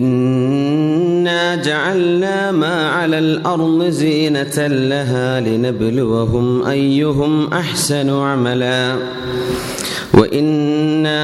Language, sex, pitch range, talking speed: Malayalam, male, 125-150 Hz, 65 wpm